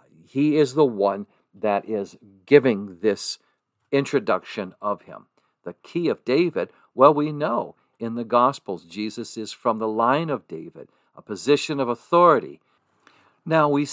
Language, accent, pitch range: English, American, 105-140 Hz